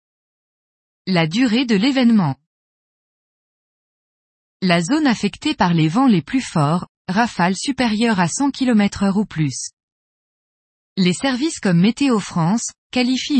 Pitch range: 180-245 Hz